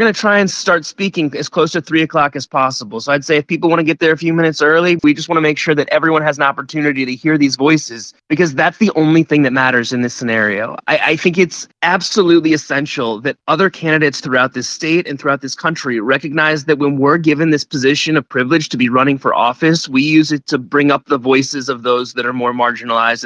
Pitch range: 125-150 Hz